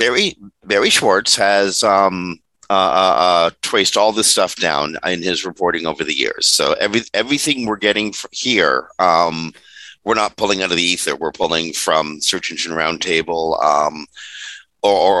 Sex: male